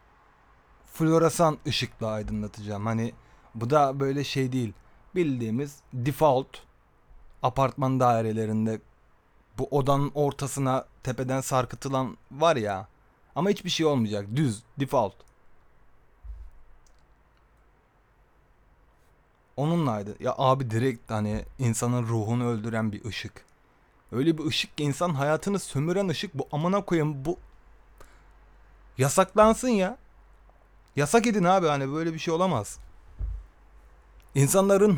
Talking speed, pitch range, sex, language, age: 100 wpm, 110-150 Hz, male, Turkish, 30-49